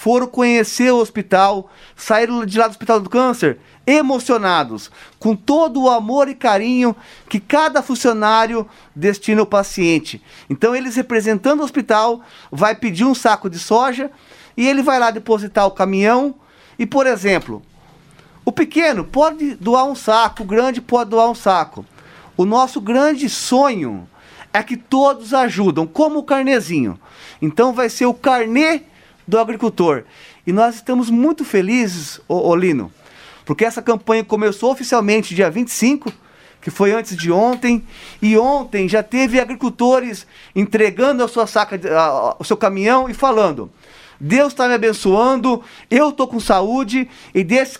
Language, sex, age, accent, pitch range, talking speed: Portuguese, male, 40-59, Brazilian, 205-255 Hz, 150 wpm